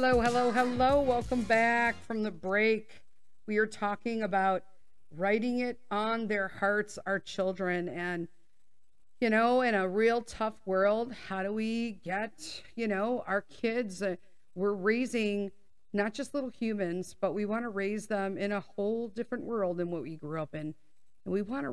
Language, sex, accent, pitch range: English, female, American, 175-225 Hz